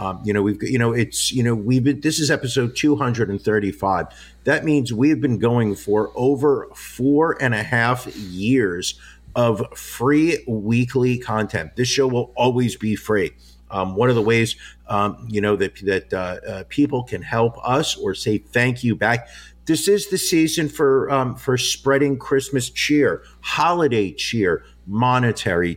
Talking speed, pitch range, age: 175 wpm, 110-140 Hz, 50-69